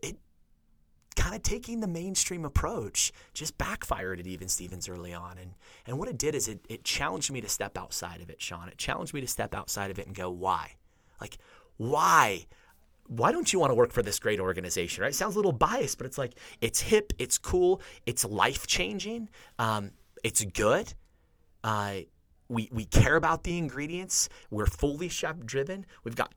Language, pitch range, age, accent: English, 95-140 Hz, 30-49, American